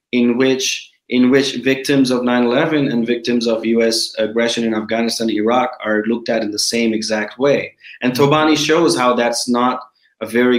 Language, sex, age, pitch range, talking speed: English, male, 30-49, 115-125 Hz, 175 wpm